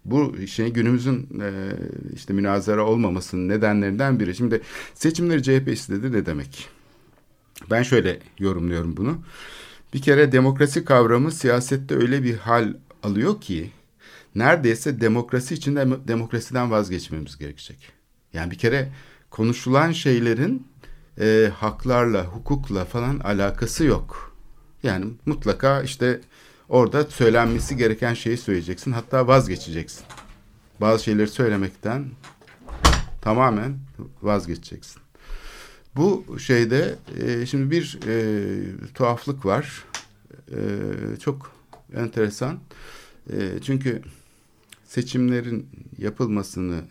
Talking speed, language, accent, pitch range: 95 wpm, Turkish, native, 100-135 Hz